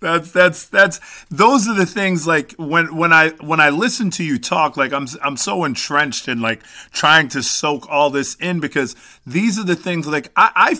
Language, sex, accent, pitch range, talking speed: English, male, American, 135-185 Hz, 210 wpm